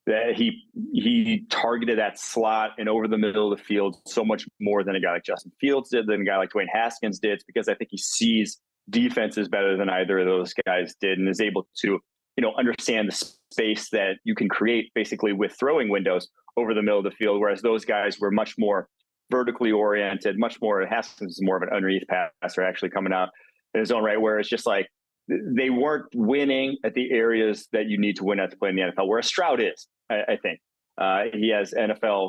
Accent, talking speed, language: American, 230 wpm, English